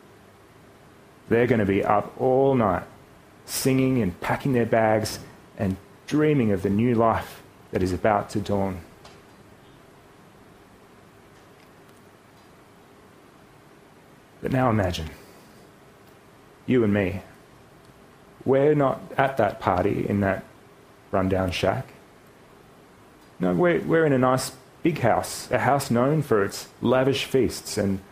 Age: 30-49